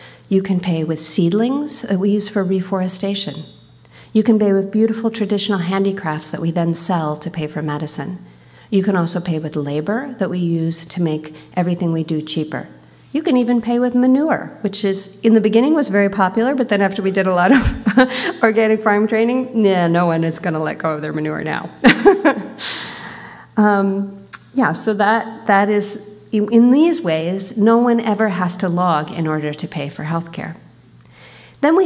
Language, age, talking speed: English, 40-59, 190 wpm